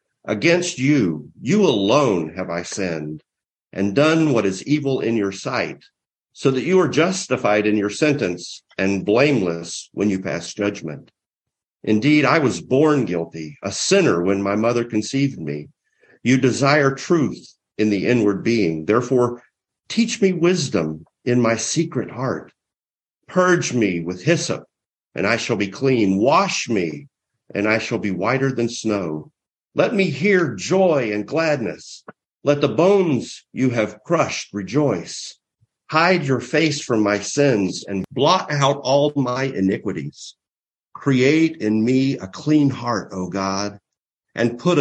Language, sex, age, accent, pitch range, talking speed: English, male, 50-69, American, 100-145 Hz, 145 wpm